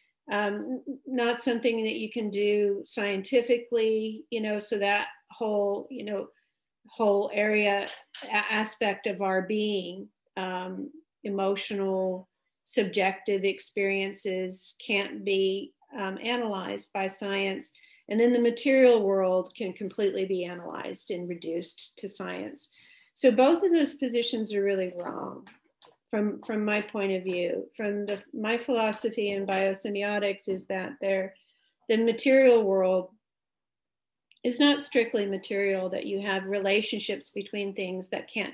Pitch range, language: 195-230 Hz, English